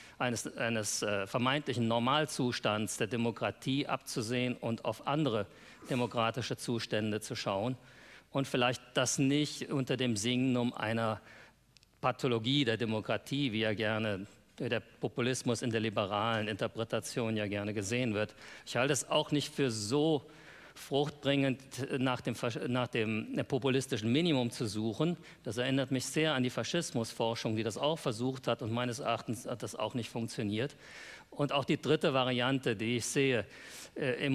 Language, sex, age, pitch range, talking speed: German, male, 50-69, 115-135 Hz, 150 wpm